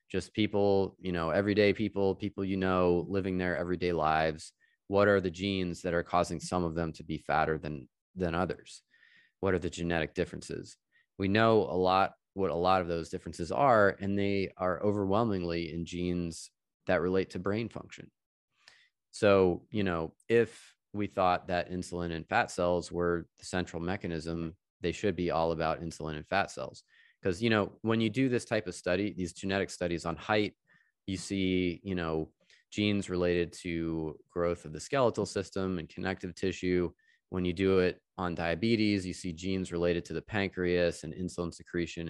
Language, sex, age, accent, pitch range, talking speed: English, male, 30-49, American, 85-100 Hz, 180 wpm